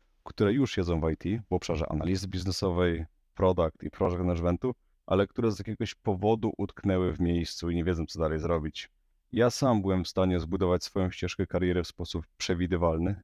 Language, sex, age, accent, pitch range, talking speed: Polish, male, 30-49, native, 85-100 Hz, 175 wpm